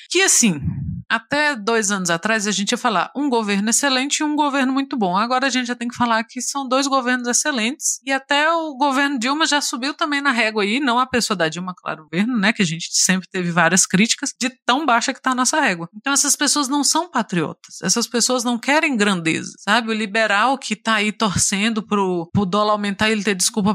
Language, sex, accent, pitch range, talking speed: Portuguese, female, Brazilian, 200-270 Hz, 230 wpm